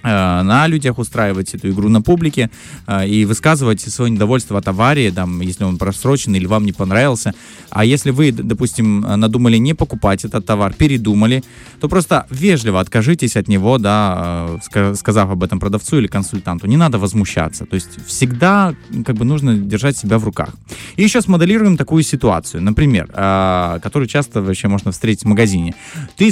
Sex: male